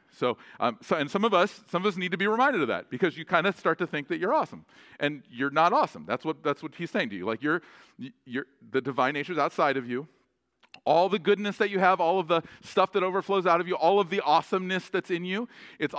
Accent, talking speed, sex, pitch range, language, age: American, 265 wpm, male, 160-215 Hz, English, 40-59